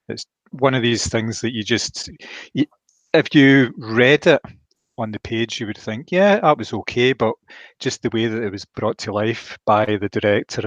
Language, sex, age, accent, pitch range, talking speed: English, male, 30-49, British, 110-125 Hz, 195 wpm